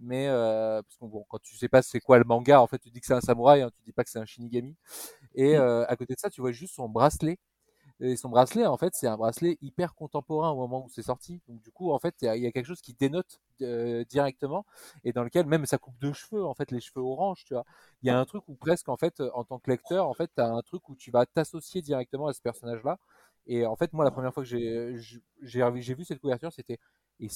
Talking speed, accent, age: 285 wpm, French, 30-49